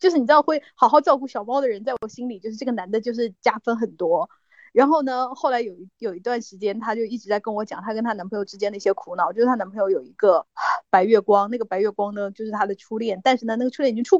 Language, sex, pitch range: Chinese, female, 215-275 Hz